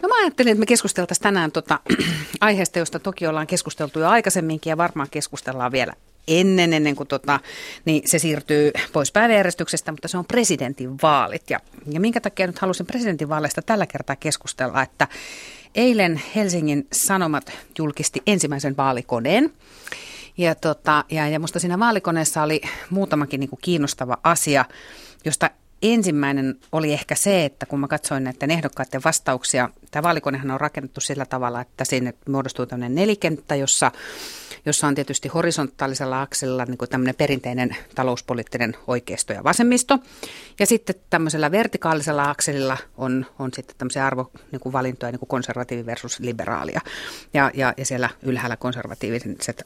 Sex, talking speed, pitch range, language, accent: female, 145 wpm, 135-175 Hz, Finnish, native